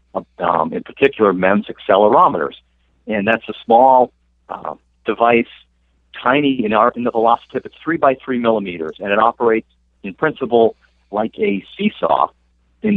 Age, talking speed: 50-69, 145 wpm